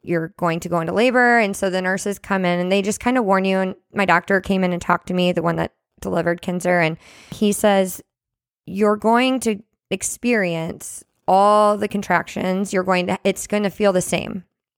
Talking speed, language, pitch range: 210 wpm, English, 170-200 Hz